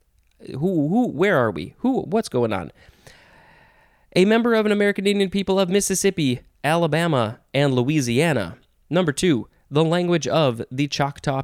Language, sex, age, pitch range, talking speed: English, male, 20-39, 120-160 Hz, 145 wpm